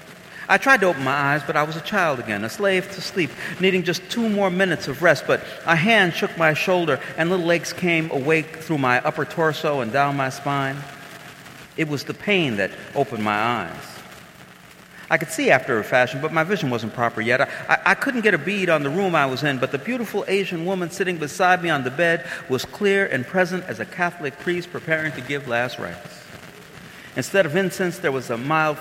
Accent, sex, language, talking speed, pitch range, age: American, male, English, 220 wpm, 135-185 Hz, 50-69